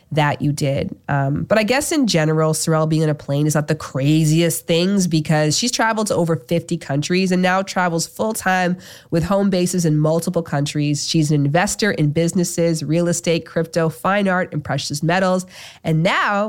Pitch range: 150-190 Hz